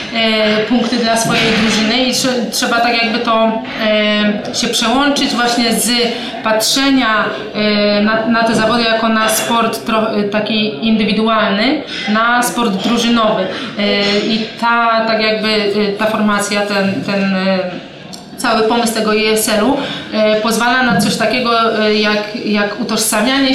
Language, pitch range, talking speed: Polish, 215-235 Hz, 140 wpm